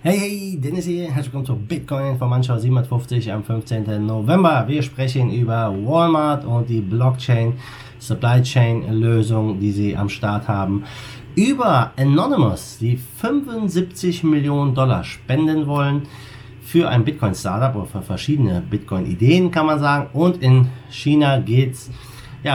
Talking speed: 145 wpm